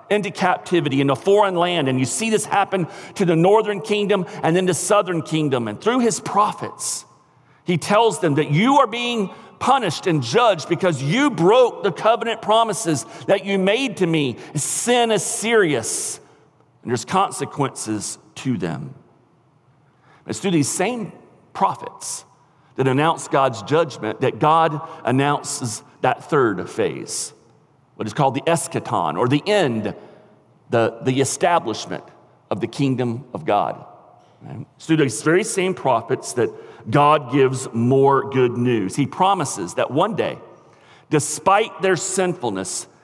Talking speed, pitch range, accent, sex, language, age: 145 wpm, 140-205 Hz, American, male, English, 40-59